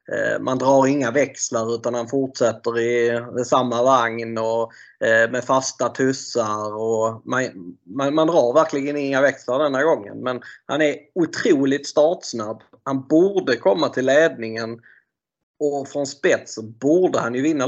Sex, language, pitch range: male, Swedish, 115-140 Hz